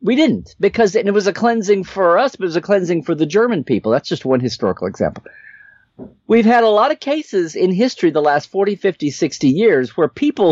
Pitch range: 165-235 Hz